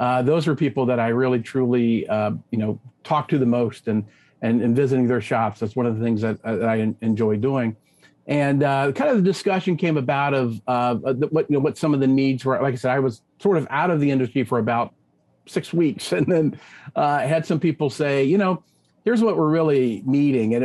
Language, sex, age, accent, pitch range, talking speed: English, male, 50-69, American, 120-145 Hz, 235 wpm